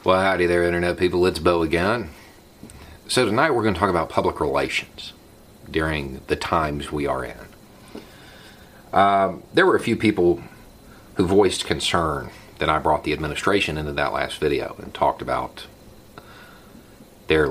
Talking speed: 155 wpm